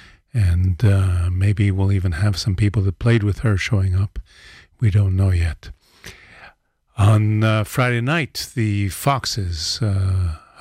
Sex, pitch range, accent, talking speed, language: male, 95-110 Hz, American, 140 wpm, English